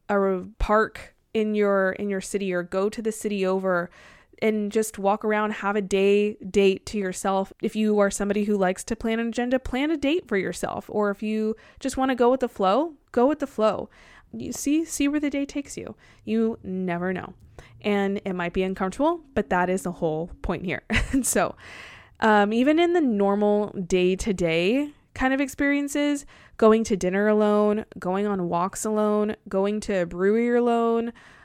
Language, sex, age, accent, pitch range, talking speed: English, female, 20-39, American, 195-235 Hz, 195 wpm